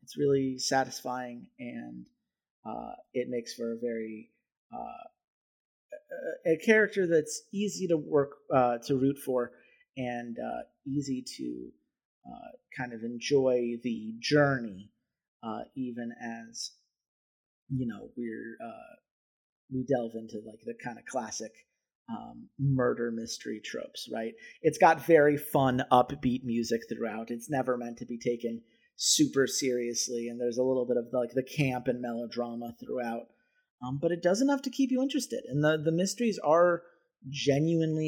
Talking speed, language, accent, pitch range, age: 145 wpm, English, American, 120-160 Hz, 30-49